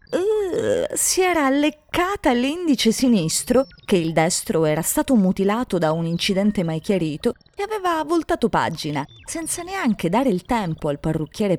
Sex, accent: female, native